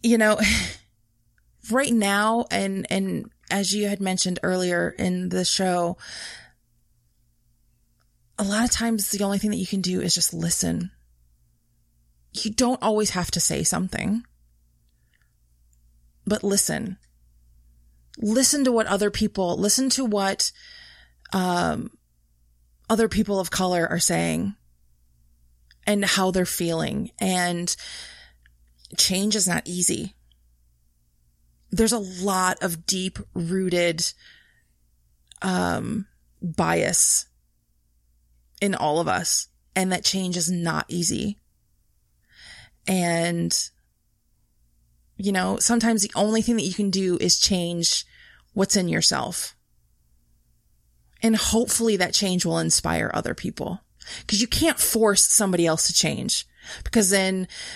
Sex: female